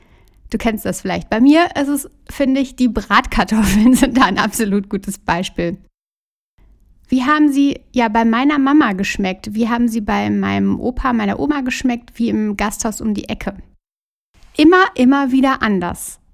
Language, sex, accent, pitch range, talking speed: German, female, German, 215-260 Hz, 165 wpm